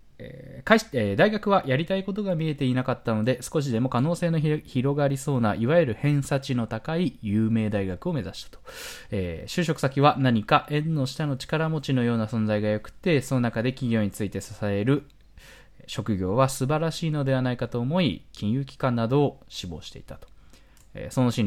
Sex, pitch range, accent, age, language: male, 110-160 Hz, native, 20-39, Japanese